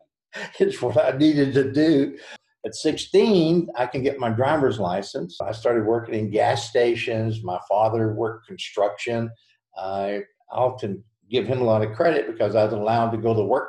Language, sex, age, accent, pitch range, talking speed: English, male, 50-69, American, 110-125 Hz, 175 wpm